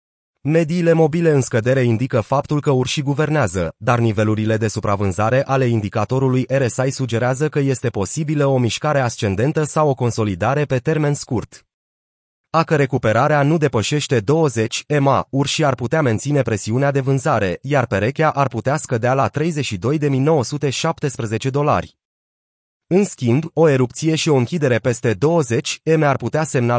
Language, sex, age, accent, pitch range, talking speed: Romanian, male, 30-49, native, 115-150 Hz, 135 wpm